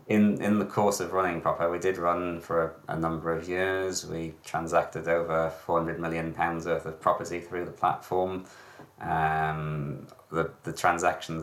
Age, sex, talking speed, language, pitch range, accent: 20-39, male, 175 wpm, English, 80-85 Hz, British